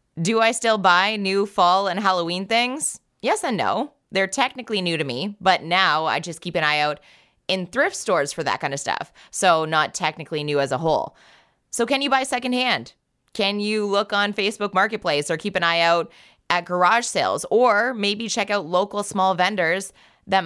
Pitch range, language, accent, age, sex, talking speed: 165-205 Hz, English, American, 20-39, female, 195 wpm